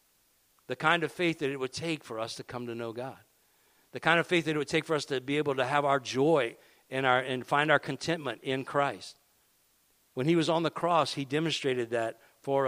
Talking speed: 235 wpm